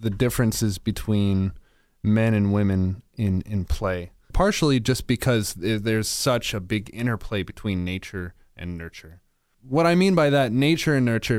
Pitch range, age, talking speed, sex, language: 100-125 Hz, 20-39, 155 wpm, male, English